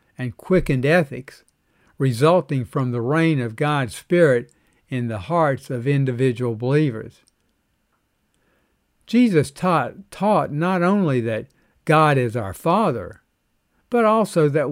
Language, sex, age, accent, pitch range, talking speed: English, male, 60-79, American, 125-165 Hz, 120 wpm